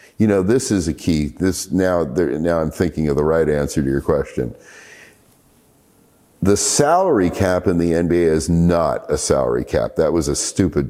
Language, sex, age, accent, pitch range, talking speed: English, male, 50-69, American, 80-135 Hz, 185 wpm